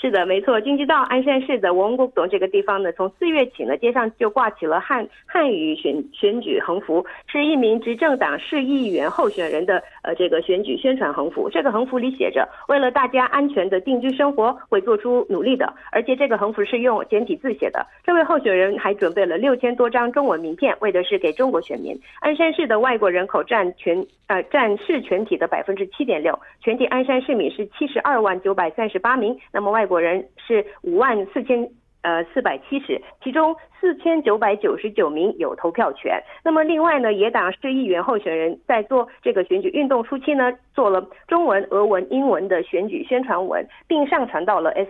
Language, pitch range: Korean, 195-290 Hz